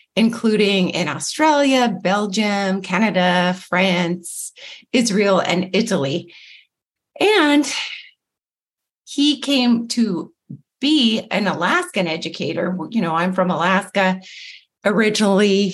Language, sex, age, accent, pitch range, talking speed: English, female, 40-59, American, 175-220 Hz, 90 wpm